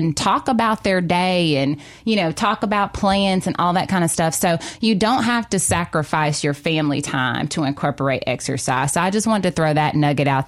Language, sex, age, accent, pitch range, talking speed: English, female, 20-39, American, 150-190 Hz, 220 wpm